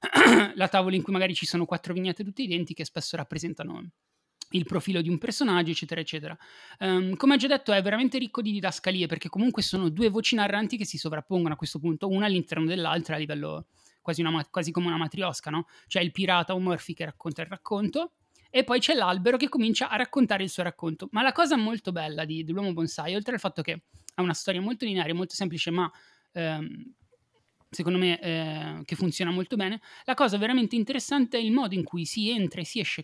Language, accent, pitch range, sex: Italian, native, 170-230 Hz, male